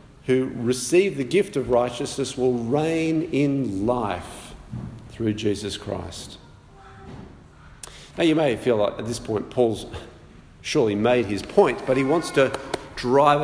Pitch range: 115-150 Hz